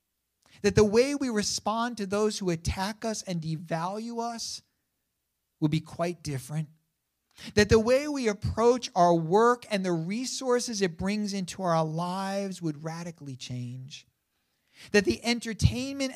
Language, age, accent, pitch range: English, 50-69, American, 130-185 Hz